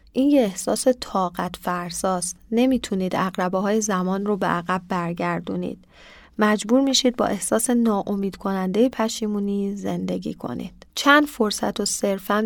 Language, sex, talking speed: Persian, female, 115 wpm